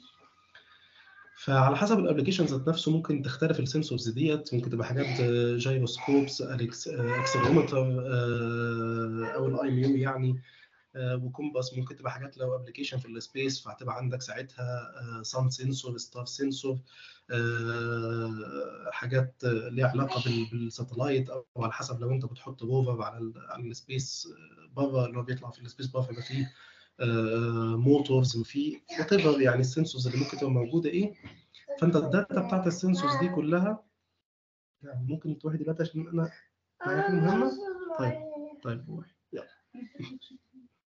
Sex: male